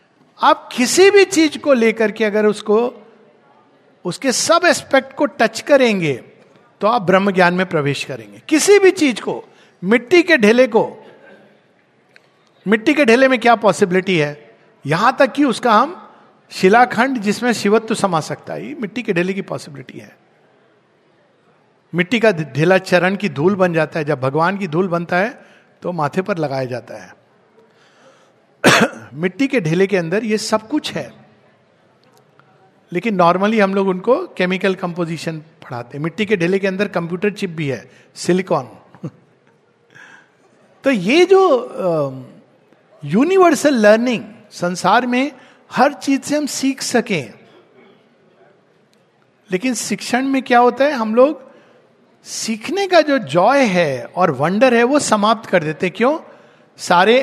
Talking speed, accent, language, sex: 145 wpm, native, Hindi, male